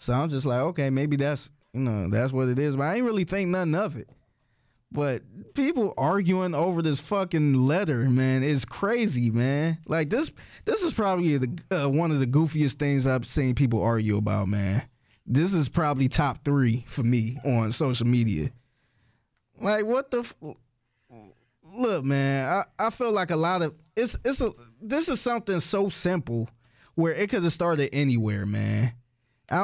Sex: male